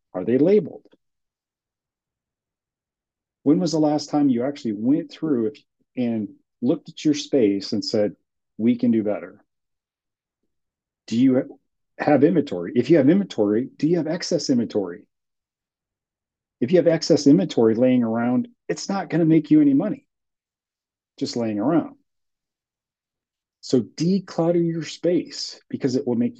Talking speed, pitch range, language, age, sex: 140 wpm, 115-190 Hz, English, 40-59, male